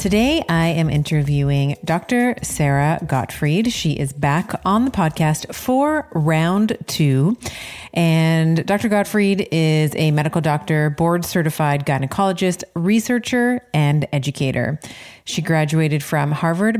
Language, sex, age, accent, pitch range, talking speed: English, female, 30-49, American, 145-190 Hz, 120 wpm